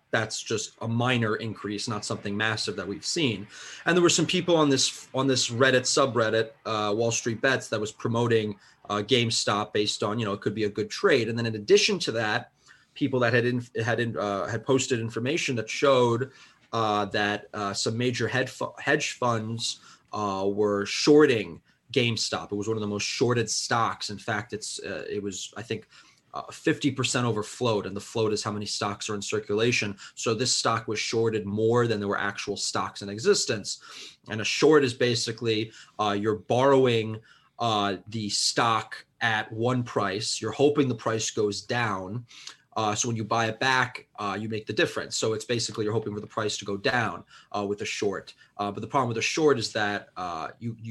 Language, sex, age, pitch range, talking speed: English, male, 30-49, 105-125 Hz, 200 wpm